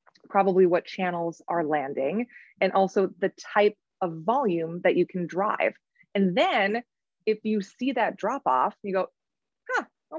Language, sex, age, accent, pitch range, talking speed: English, female, 30-49, American, 180-230 Hz, 160 wpm